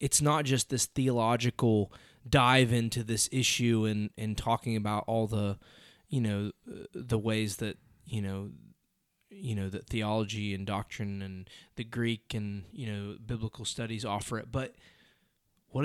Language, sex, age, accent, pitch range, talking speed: English, male, 20-39, American, 105-120 Hz, 150 wpm